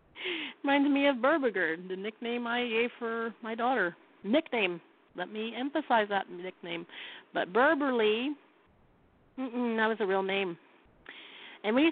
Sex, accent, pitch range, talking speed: female, American, 175-260 Hz, 135 wpm